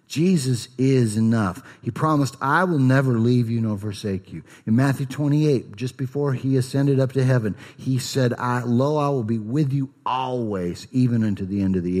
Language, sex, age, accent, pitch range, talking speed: English, male, 50-69, American, 100-130 Hz, 190 wpm